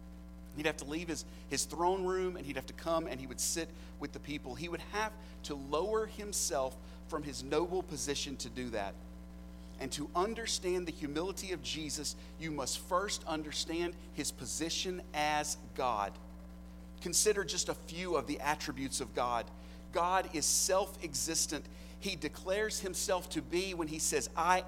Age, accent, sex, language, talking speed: 40-59, American, male, English, 170 wpm